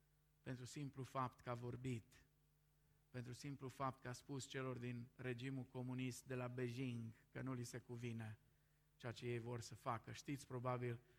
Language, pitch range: Romanian, 120-150 Hz